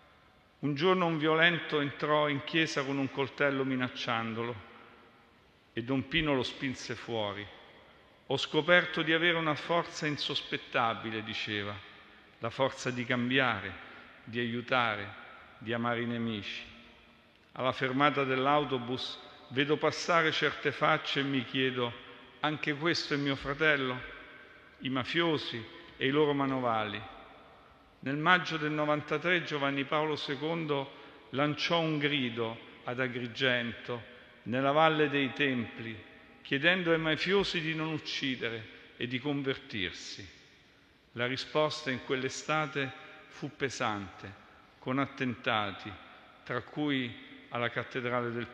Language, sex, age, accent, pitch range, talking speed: Italian, male, 50-69, native, 115-145 Hz, 115 wpm